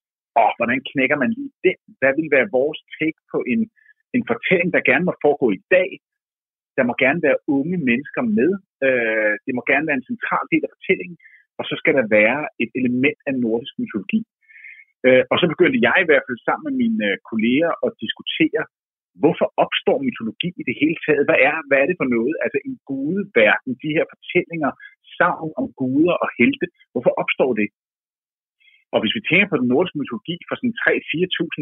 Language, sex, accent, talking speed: Danish, male, native, 190 wpm